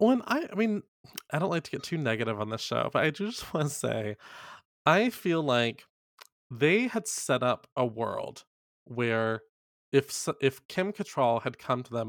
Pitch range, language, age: 120-160 Hz, English, 20-39